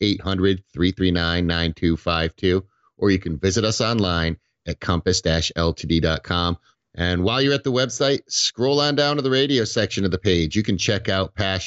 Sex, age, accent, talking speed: male, 50-69, American, 155 wpm